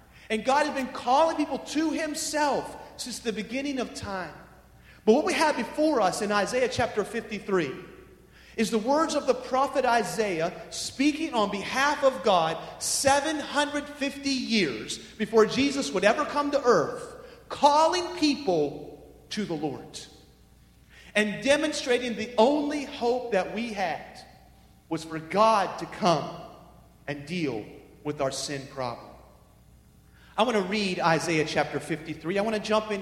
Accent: American